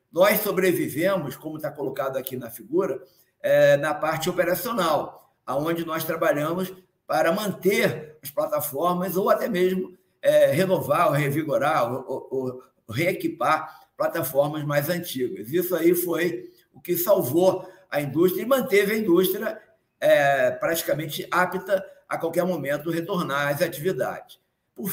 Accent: Brazilian